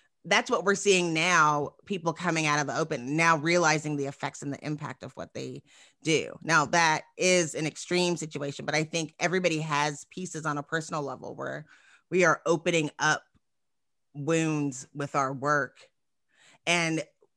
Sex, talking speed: female, 165 wpm